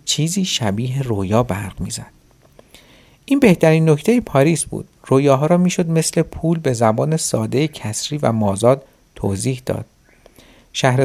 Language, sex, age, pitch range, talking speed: Persian, male, 50-69, 105-155 Hz, 135 wpm